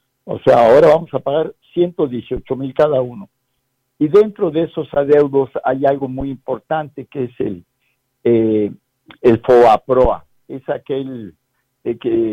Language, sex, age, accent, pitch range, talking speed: Spanish, male, 60-79, Mexican, 115-140 Hz, 140 wpm